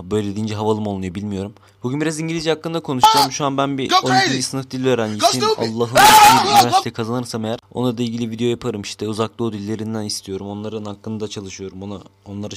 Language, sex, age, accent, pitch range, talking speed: Turkish, male, 20-39, native, 105-145 Hz, 185 wpm